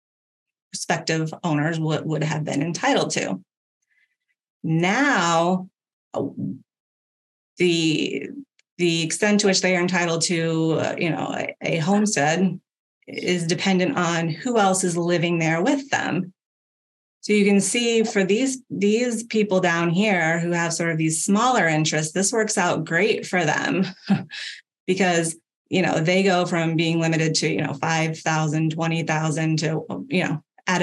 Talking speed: 150 wpm